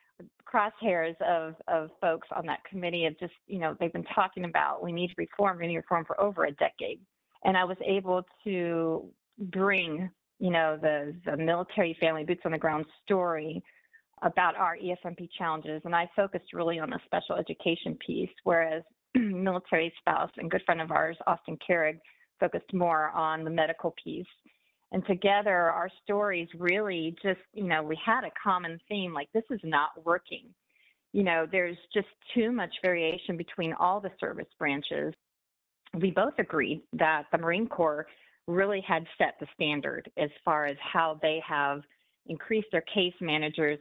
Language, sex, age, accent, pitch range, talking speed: English, female, 40-59, American, 160-190 Hz, 170 wpm